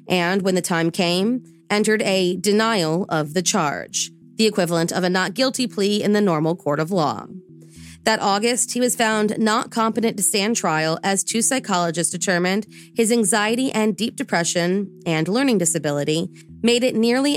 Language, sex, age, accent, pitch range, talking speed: English, female, 30-49, American, 170-225 Hz, 170 wpm